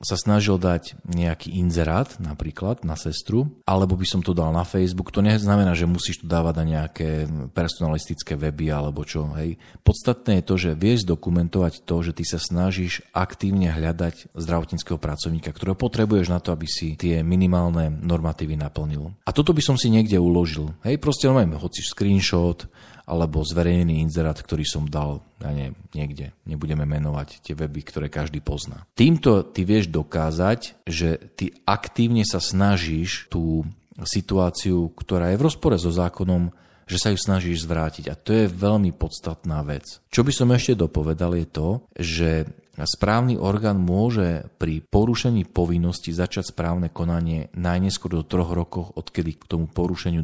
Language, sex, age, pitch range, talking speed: Slovak, male, 40-59, 80-100 Hz, 160 wpm